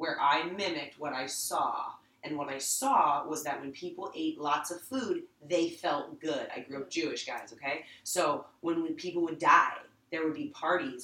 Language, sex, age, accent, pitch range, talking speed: English, female, 30-49, American, 145-230 Hz, 195 wpm